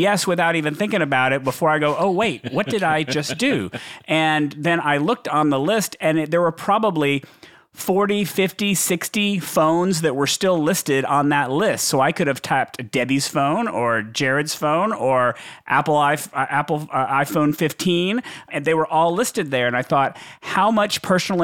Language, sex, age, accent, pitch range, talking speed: English, male, 40-59, American, 140-180 Hz, 190 wpm